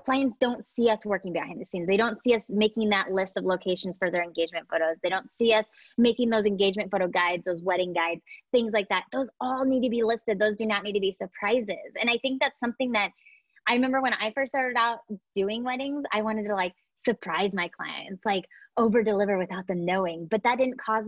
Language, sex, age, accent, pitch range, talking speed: English, female, 20-39, American, 180-235 Hz, 230 wpm